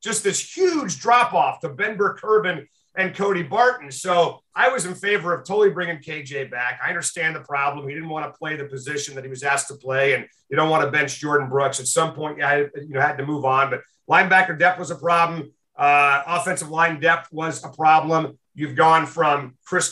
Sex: male